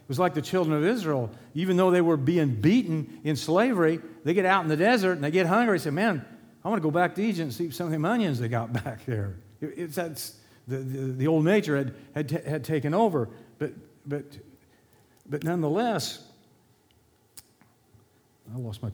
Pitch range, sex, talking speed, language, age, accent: 145-195 Hz, male, 210 wpm, English, 50-69, American